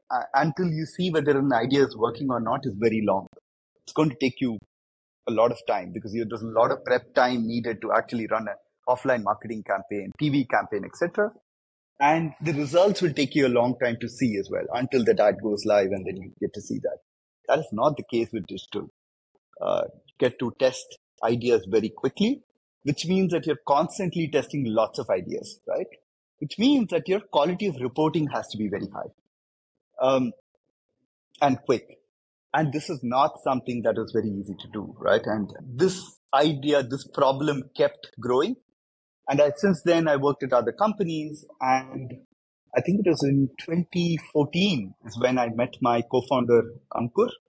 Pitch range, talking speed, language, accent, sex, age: 115-165 Hz, 185 wpm, English, Indian, male, 30-49